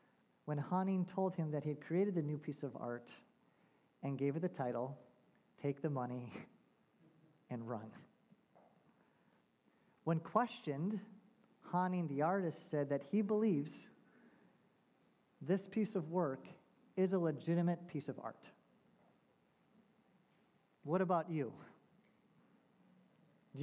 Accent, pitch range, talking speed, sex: American, 165-215 Hz, 115 wpm, male